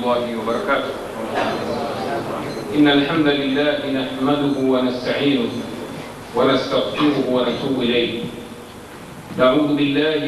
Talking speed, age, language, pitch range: 65 wpm, 40-59, Swahili, 125-145 Hz